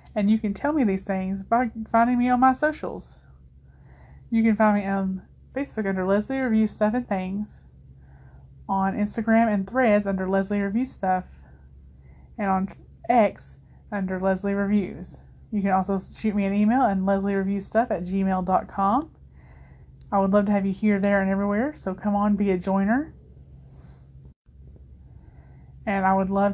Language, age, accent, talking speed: English, 20-39, American, 160 wpm